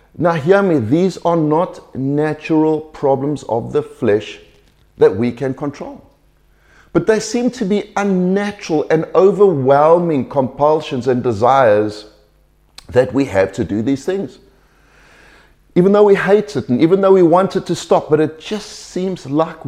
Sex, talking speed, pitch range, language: male, 155 wpm, 130-170 Hz, English